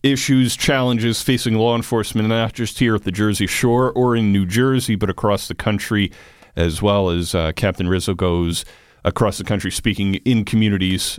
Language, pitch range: English, 90-115 Hz